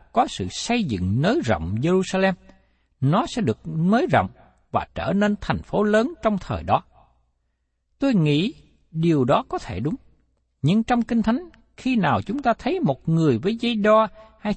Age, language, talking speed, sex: 60-79, Vietnamese, 175 wpm, male